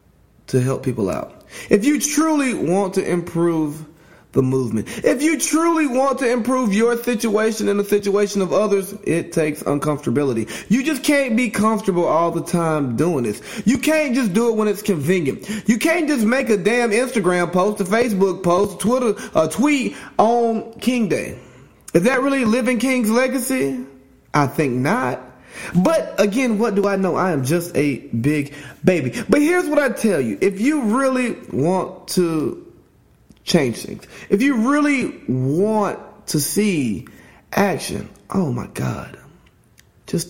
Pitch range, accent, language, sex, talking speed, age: 155-235 Hz, American, English, male, 160 wpm, 30-49